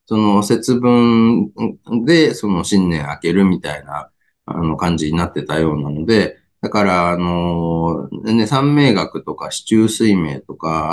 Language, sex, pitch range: Japanese, male, 80-115 Hz